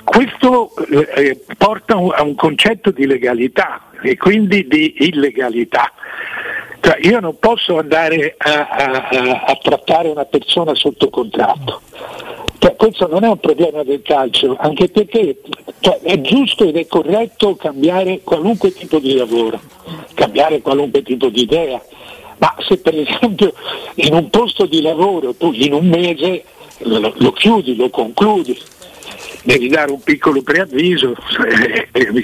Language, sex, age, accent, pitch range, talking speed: Italian, male, 60-79, native, 140-215 Hz, 140 wpm